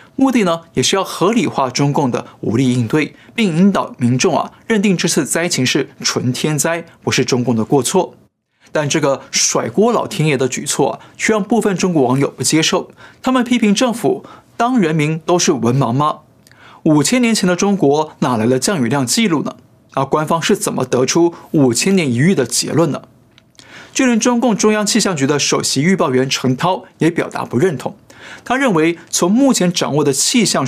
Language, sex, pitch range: Chinese, male, 125-195 Hz